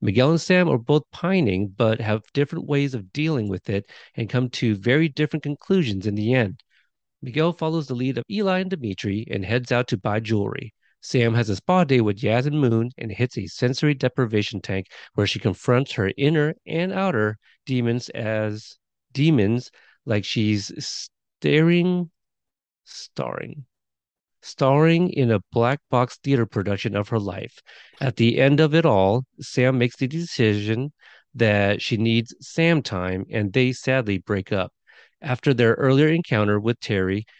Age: 40-59